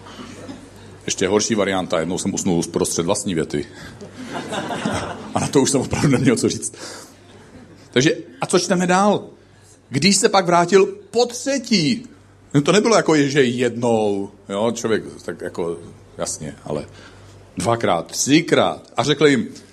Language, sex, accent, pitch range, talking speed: Czech, male, native, 120-205 Hz, 140 wpm